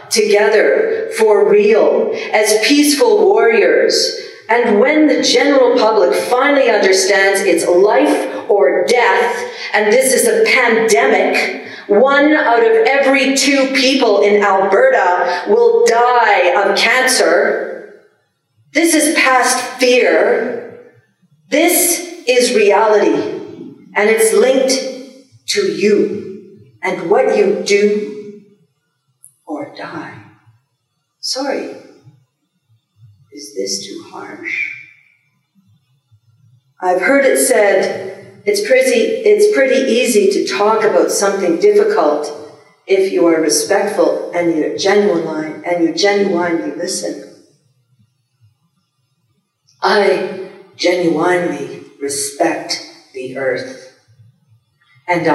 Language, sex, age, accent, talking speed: English, female, 50-69, American, 95 wpm